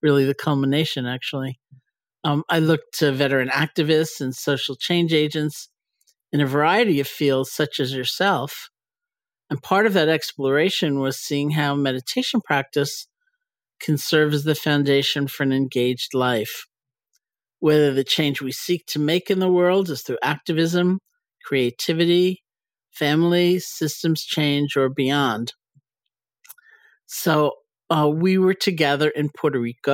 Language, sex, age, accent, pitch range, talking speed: English, male, 50-69, American, 135-155 Hz, 135 wpm